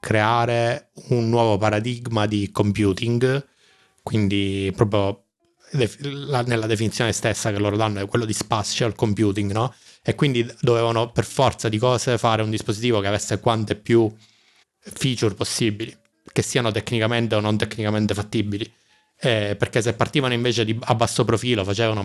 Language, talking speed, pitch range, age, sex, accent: Italian, 140 wpm, 105-120 Hz, 20-39, male, native